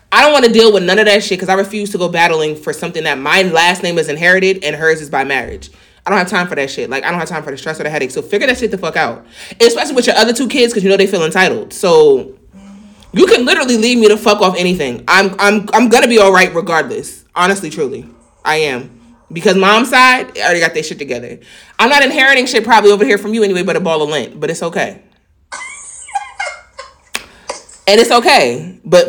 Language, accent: English, American